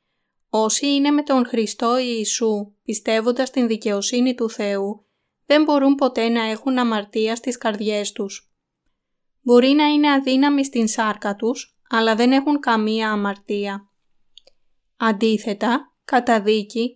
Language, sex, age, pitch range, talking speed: Greek, female, 20-39, 215-255 Hz, 120 wpm